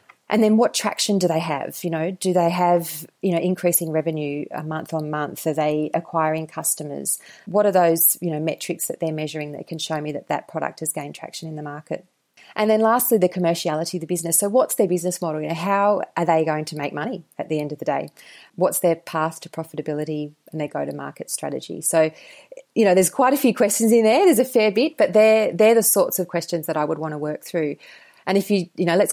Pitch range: 155-185 Hz